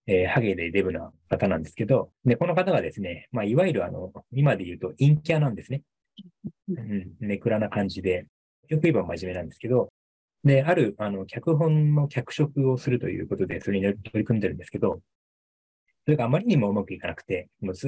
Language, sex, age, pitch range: Japanese, male, 20-39, 100-145 Hz